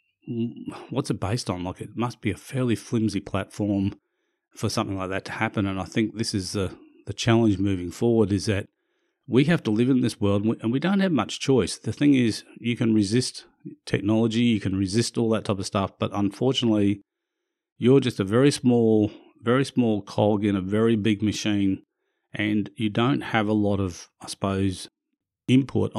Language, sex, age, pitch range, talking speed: English, male, 40-59, 100-115 Hz, 190 wpm